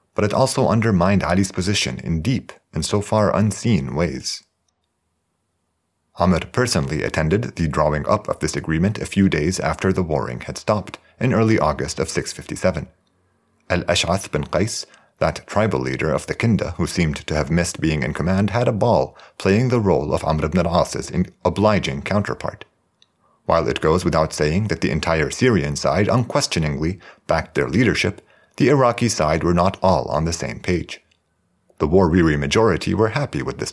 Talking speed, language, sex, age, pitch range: 170 wpm, English, male, 40-59, 80-105 Hz